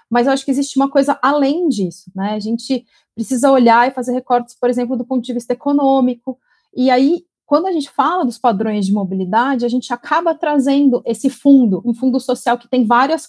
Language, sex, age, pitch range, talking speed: Portuguese, female, 30-49, 230-275 Hz, 210 wpm